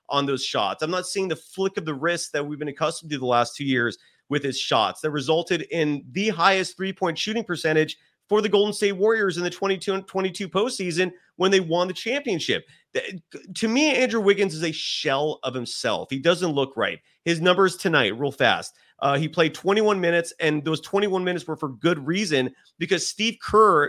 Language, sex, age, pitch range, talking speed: English, male, 30-49, 155-200 Hz, 200 wpm